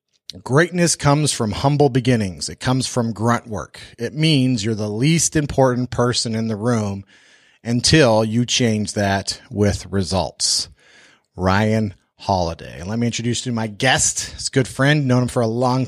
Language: English